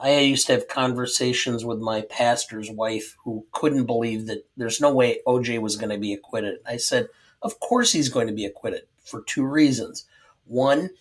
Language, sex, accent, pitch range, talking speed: English, male, American, 120-150 Hz, 190 wpm